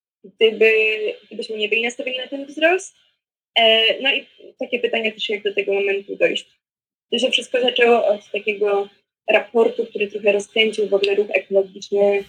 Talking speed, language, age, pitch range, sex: 160 wpm, Polish, 20-39, 205-235 Hz, female